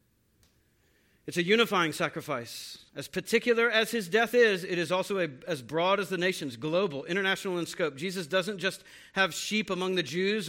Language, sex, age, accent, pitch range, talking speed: English, male, 40-59, American, 160-210 Hz, 170 wpm